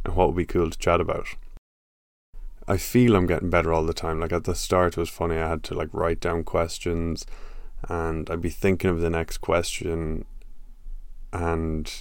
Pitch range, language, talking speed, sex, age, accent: 80-95 Hz, English, 190 wpm, male, 20-39, Irish